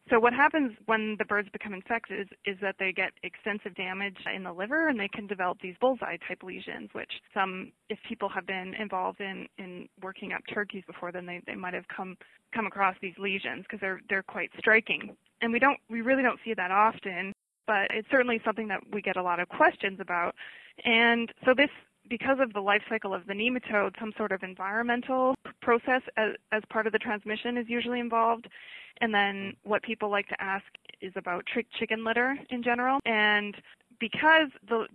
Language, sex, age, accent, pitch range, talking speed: English, female, 20-39, American, 190-225 Hz, 195 wpm